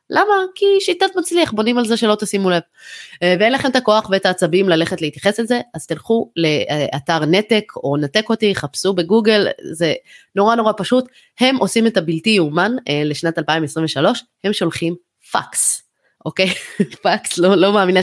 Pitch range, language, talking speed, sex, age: 160-225 Hz, Hebrew, 155 wpm, female, 20-39